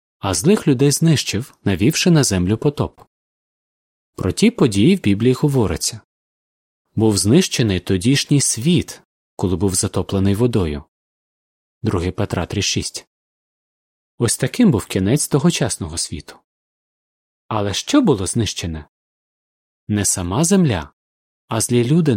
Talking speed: 110 wpm